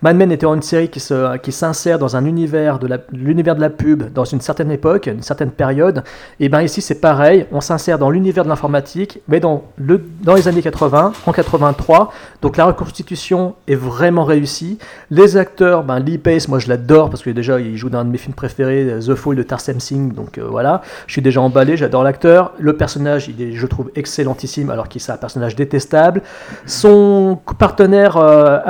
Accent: French